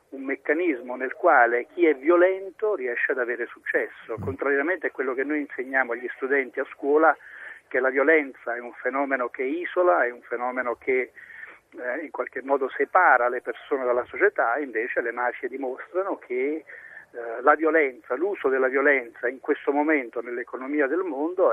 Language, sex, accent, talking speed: Italian, male, native, 165 wpm